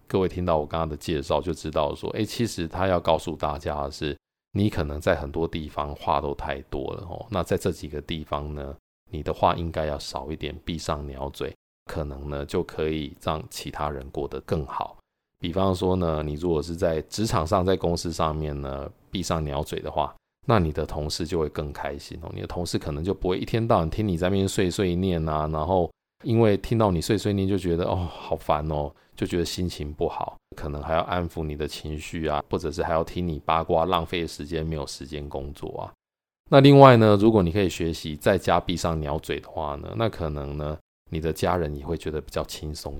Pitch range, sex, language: 75-90 Hz, male, Chinese